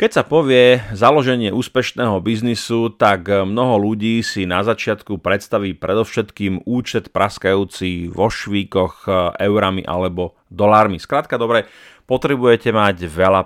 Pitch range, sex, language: 100-120 Hz, male, Slovak